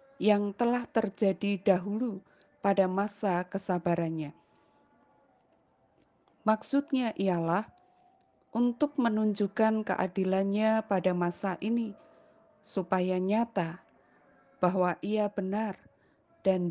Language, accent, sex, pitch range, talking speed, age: Indonesian, native, female, 175-215 Hz, 75 wpm, 20-39